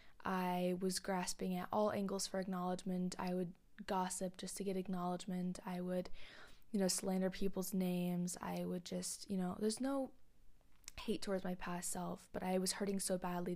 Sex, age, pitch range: female, 20-39, 180-195 Hz